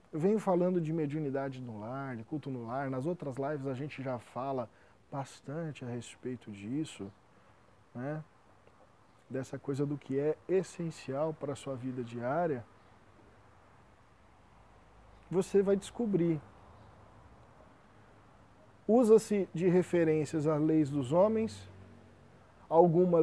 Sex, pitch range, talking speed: male, 110-160 Hz, 115 wpm